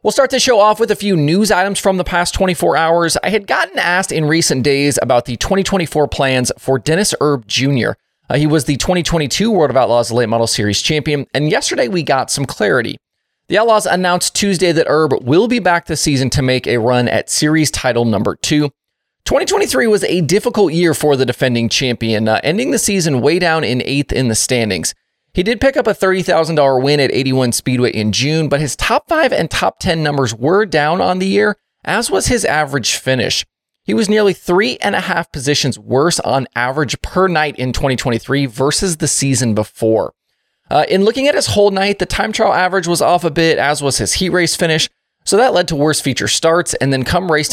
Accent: American